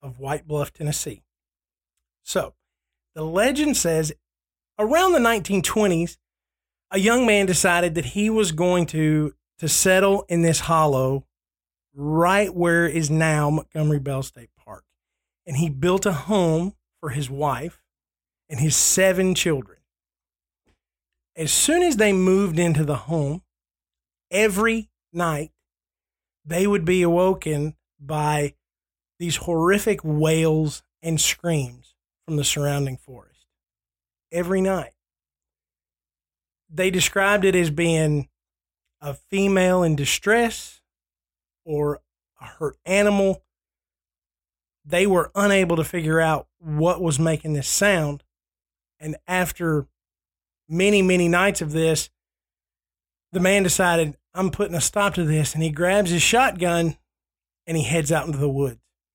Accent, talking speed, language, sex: American, 125 wpm, English, male